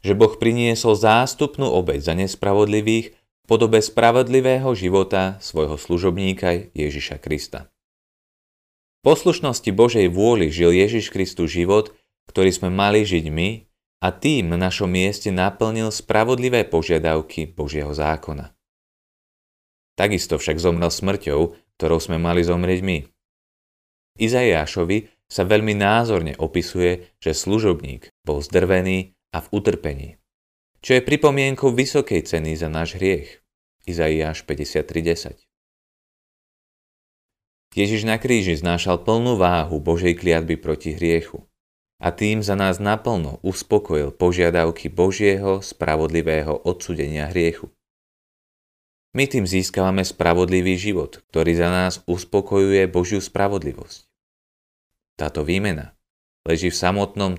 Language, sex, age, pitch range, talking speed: Slovak, male, 30-49, 80-105 Hz, 110 wpm